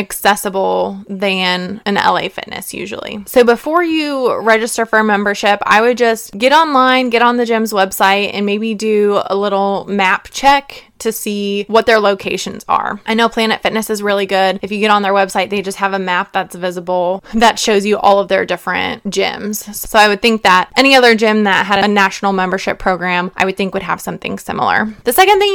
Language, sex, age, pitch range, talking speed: English, female, 20-39, 195-225 Hz, 205 wpm